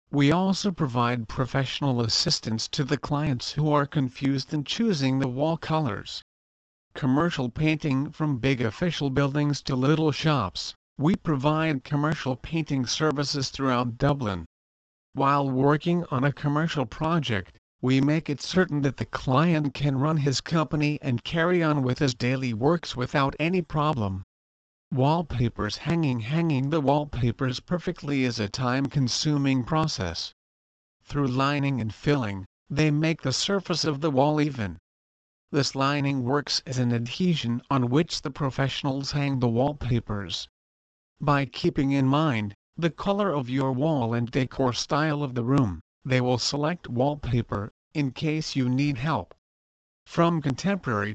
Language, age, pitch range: English, 50-69, 120-155 Hz